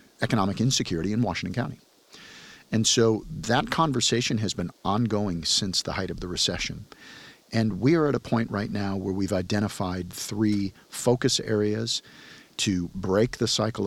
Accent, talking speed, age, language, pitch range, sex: American, 155 wpm, 50-69, English, 90-115 Hz, male